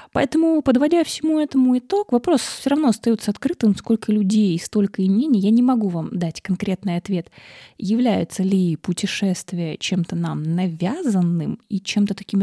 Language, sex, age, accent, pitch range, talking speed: Russian, female, 20-39, native, 195-235 Hz, 155 wpm